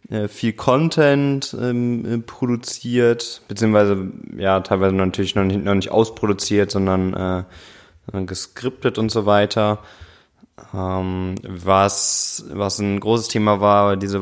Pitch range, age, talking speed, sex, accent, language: 95-115 Hz, 20-39, 105 wpm, male, German, German